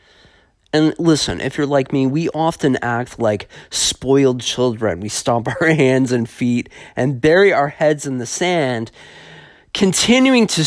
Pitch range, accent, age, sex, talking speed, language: 125-165 Hz, American, 30-49, male, 150 wpm, English